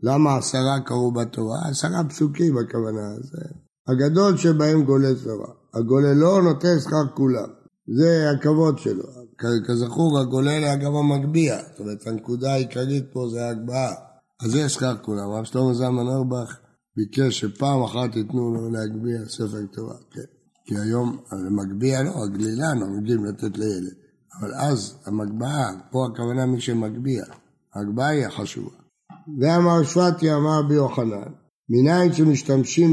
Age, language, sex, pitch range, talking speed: 60-79, Hebrew, male, 120-150 Hz, 130 wpm